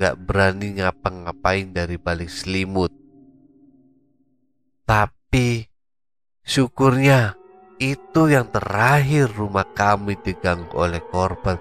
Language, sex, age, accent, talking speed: Indonesian, male, 30-49, native, 85 wpm